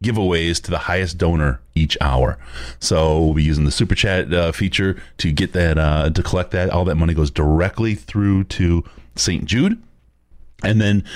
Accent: American